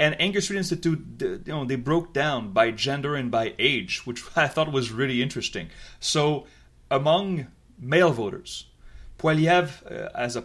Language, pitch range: English, 120-160 Hz